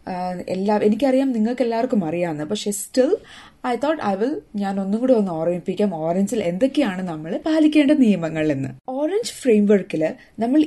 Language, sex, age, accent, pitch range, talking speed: Malayalam, female, 20-39, native, 180-255 Hz, 140 wpm